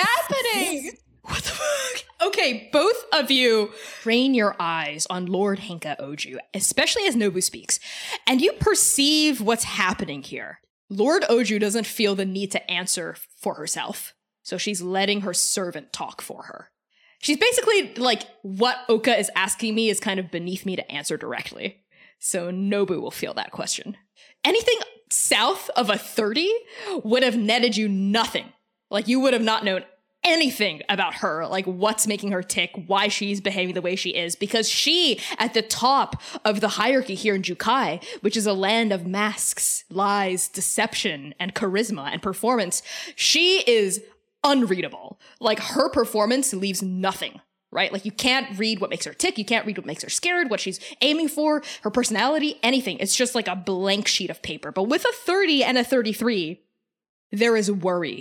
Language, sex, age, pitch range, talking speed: English, female, 20-39, 190-260 Hz, 175 wpm